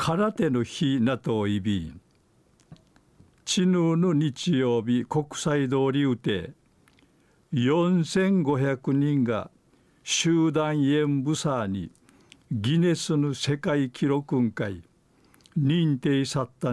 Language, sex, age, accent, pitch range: Japanese, male, 50-69, native, 120-155 Hz